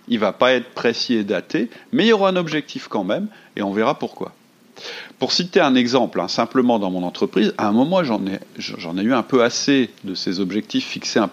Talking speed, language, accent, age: 240 wpm, French, French, 40-59